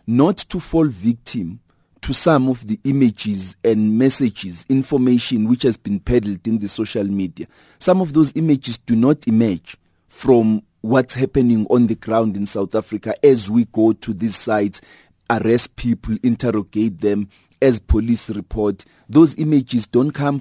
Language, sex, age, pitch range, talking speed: English, male, 30-49, 110-135 Hz, 155 wpm